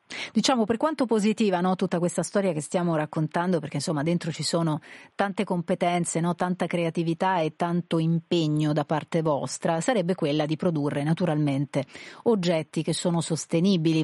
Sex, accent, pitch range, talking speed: female, native, 165-195 Hz, 145 wpm